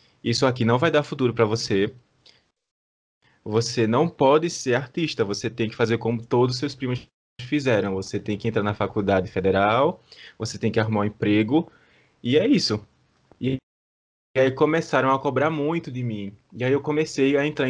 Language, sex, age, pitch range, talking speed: Portuguese, male, 20-39, 110-140 Hz, 180 wpm